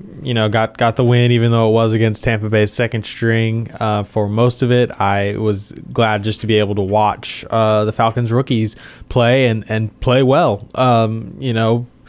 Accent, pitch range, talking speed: American, 110-120 Hz, 205 wpm